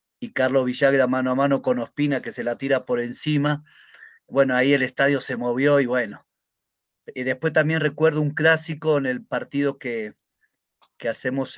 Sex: male